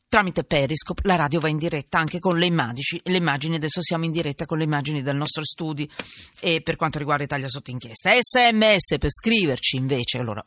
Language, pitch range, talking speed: Italian, 150-220 Hz, 200 wpm